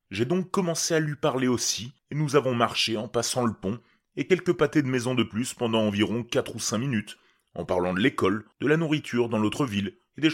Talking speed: 230 wpm